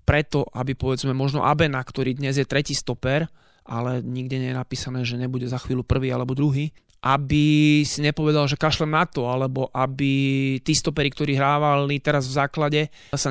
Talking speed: 175 wpm